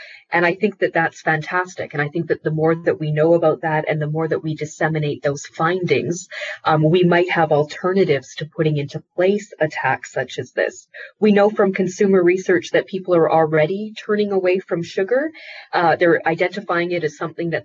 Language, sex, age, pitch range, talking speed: English, female, 30-49, 155-190 Hz, 200 wpm